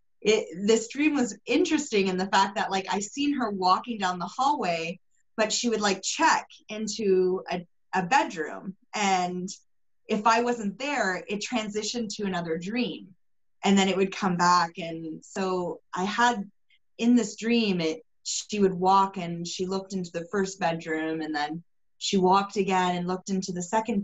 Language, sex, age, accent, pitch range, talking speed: English, female, 20-39, American, 180-225 Hz, 175 wpm